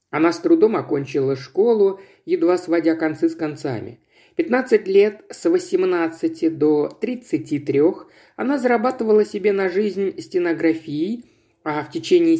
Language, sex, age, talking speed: Russian, male, 50-69, 120 wpm